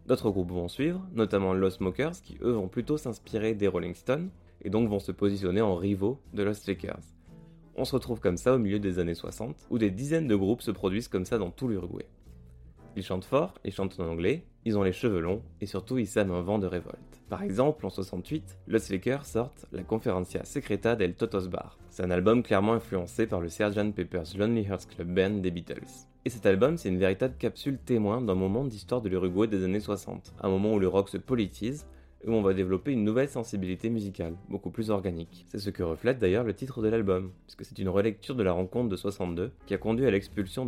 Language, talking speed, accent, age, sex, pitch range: French, 225 wpm, French, 20-39, male, 90-115 Hz